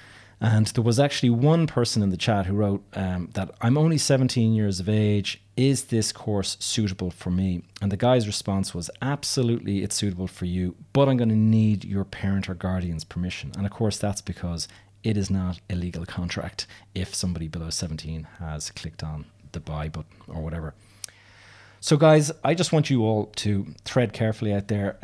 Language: English